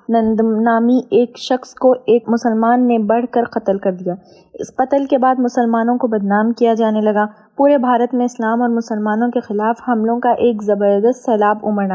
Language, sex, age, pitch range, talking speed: Urdu, female, 20-39, 220-245 Hz, 185 wpm